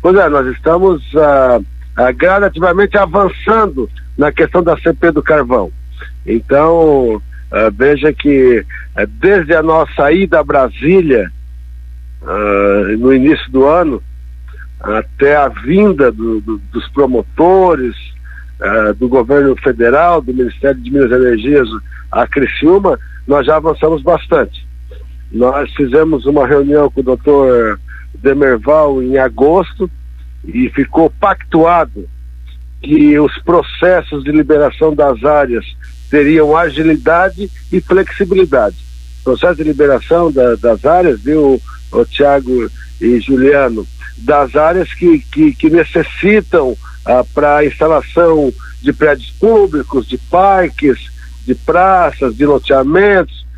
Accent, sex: Brazilian, male